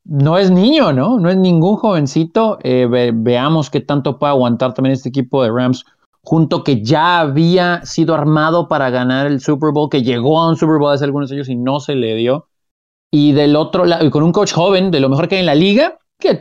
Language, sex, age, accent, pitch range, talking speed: Spanish, male, 30-49, Mexican, 135-175 Hz, 225 wpm